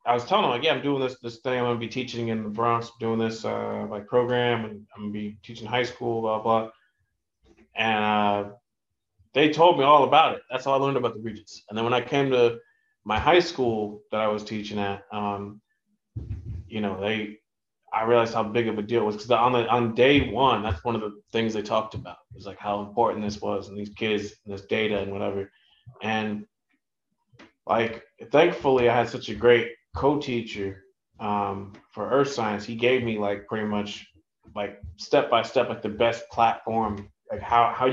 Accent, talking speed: American, 220 wpm